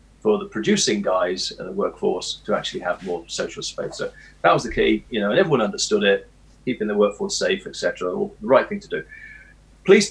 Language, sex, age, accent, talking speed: English, male, 40-59, British, 210 wpm